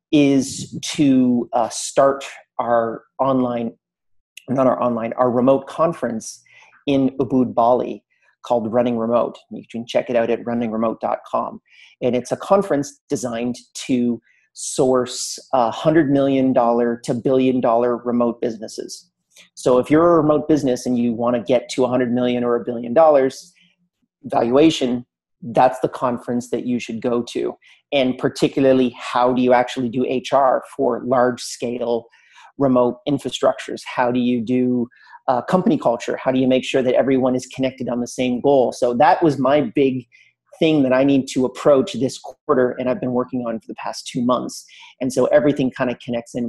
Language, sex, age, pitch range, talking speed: English, male, 40-59, 120-135 Hz, 170 wpm